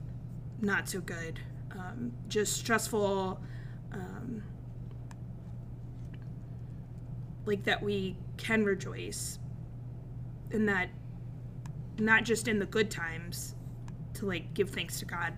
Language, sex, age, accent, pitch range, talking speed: English, female, 20-39, American, 125-200 Hz, 100 wpm